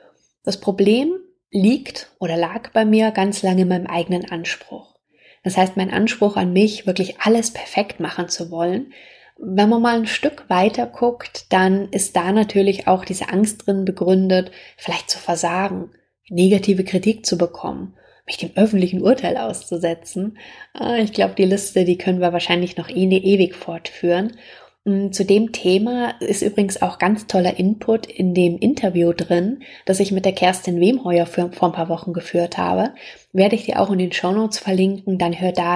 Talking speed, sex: 170 wpm, female